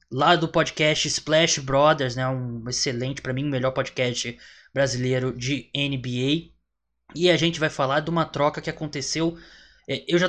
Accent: Brazilian